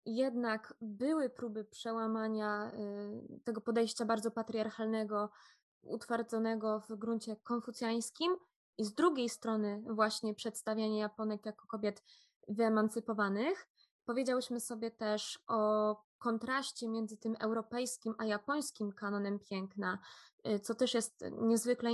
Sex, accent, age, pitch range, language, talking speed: female, native, 20-39, 210-235 Hz, Polish, 105 wpm